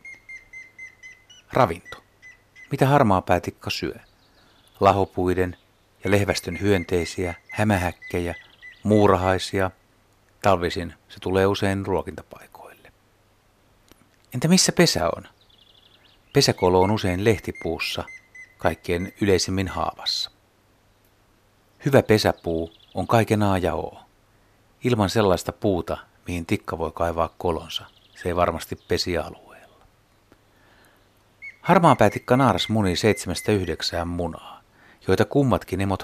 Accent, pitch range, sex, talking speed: native, 95-110 Hz, male, 90 wpm